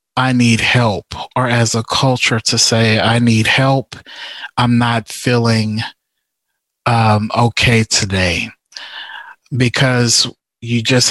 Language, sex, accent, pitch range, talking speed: English, male, American, 115-130 Hz, 115 wpm